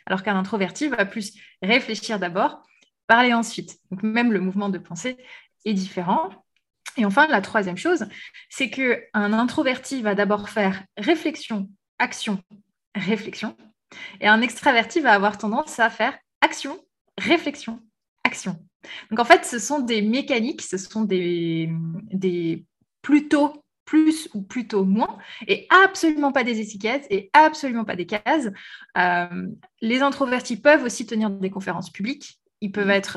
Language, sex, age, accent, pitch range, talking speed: French, female, 20-39, French, 195-250 Hz, 145 wpm